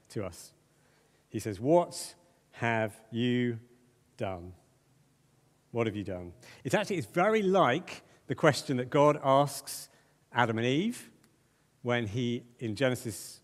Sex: male